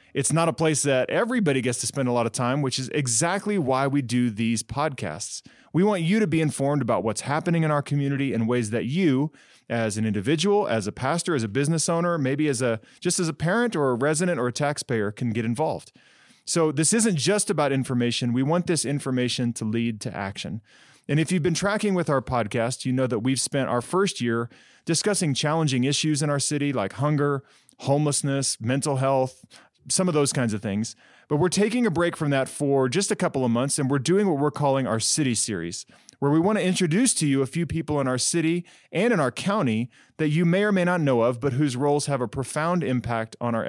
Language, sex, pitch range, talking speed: English, male, 125-165 Hz, 230 wpm